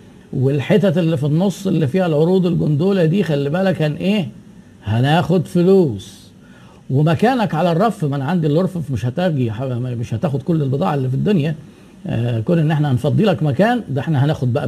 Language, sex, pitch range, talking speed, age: Arabic, male, 140-185 Hz, 160 wpm, 50-69